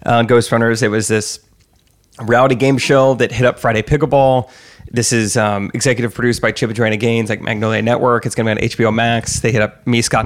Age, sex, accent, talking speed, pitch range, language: 30-49, male, American, 220 wpm, 115-130 Hz, English